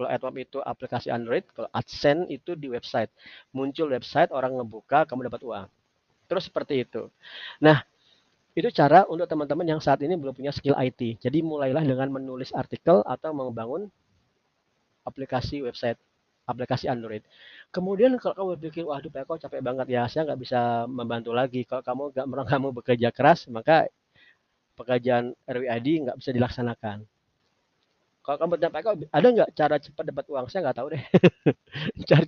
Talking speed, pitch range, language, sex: 155 wpm, 120-145 Hz, Indonesian, male